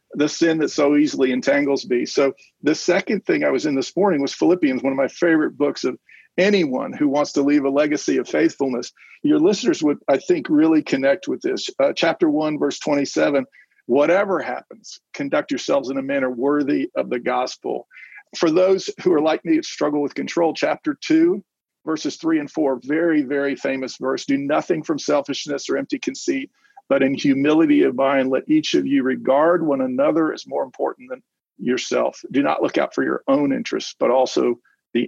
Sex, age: male, 50-69